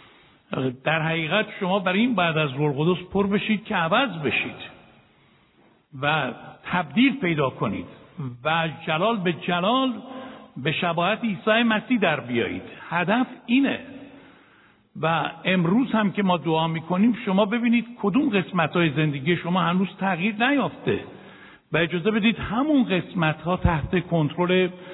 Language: Persian